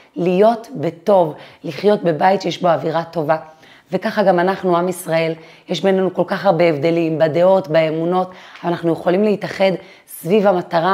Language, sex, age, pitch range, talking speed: Hebrew, female, 30-49, 165-195 Hz, 145 wpm